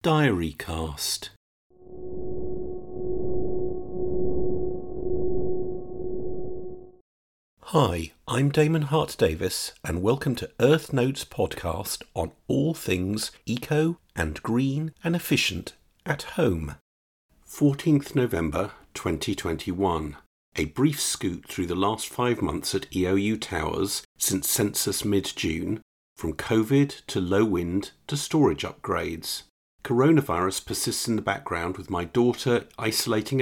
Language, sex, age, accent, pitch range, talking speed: English, male, 50-69, British, 95-155 Hz, 100 wpm